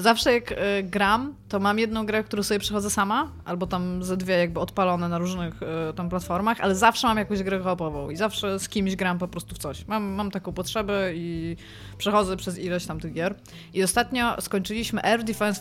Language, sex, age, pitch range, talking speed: Polish, female, 20-39, 180-220 Hz, 200 wpm